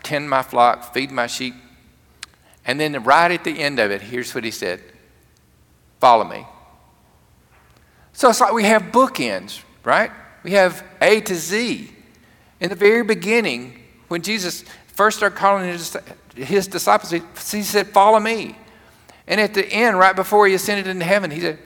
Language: English